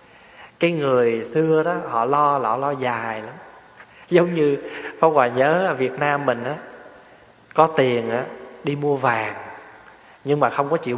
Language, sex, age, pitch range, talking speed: Vietnamese, male, 20-39, 120-155 Hz, 170 wpm